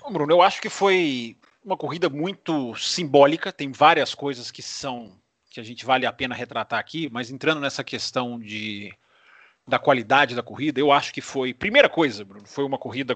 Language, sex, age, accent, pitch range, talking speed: Portuguese, male, 40-59, Brazilian, 125-180 Hz, 185 wpm